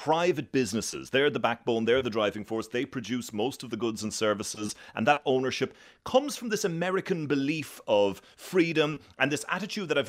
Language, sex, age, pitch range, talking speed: English, male, 30-49, 105-145 Hz, 190 wpm